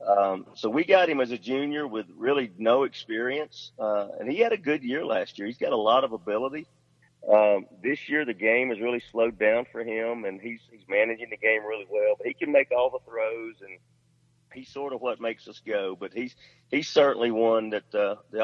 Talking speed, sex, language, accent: 225 wpm, male, English, American